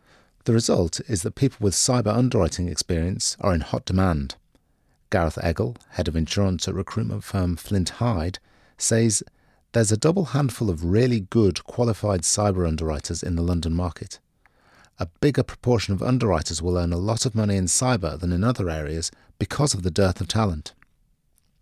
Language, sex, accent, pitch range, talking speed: English, male, British, 85-115 Hz, 170 wpm